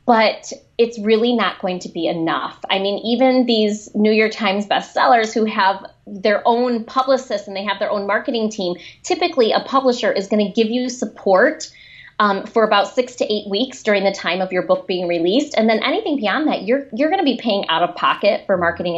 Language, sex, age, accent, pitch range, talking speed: English, female, 20-39, American, 190-260 Hz, 210 wpm